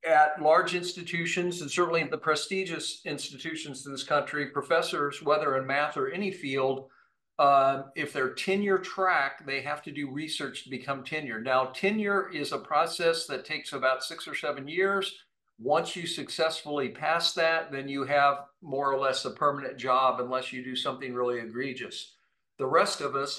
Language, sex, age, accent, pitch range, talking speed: English, male, 50-69, American, 135-175 Hz, 175 wpm